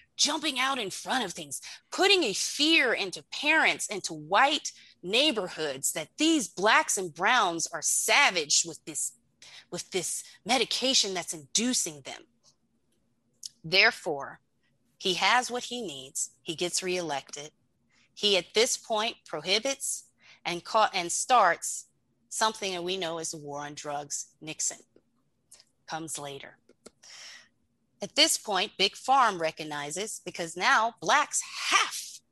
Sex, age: female, 30-49